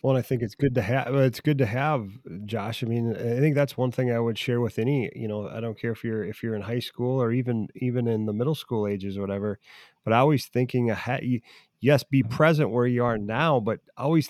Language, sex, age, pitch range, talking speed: English, male, 30-49, 110-135 Hz, 250 wpm